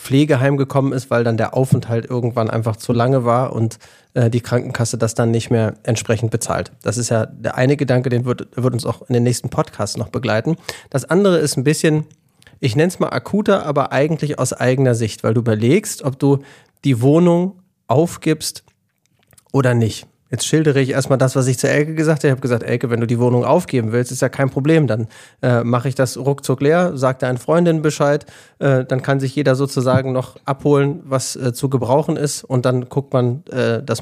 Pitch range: 120-150 Hz